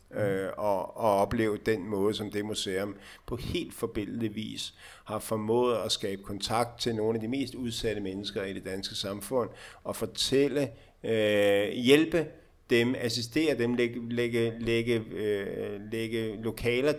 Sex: male